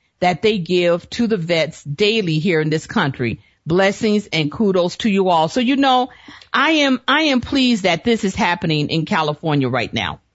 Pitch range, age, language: 155-245 Hz, 50-69, English